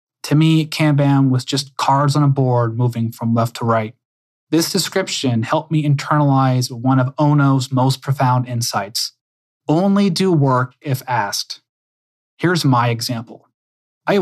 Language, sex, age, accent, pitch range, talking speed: English, male, 20-39, American, 120-150 Hz, 145 wpm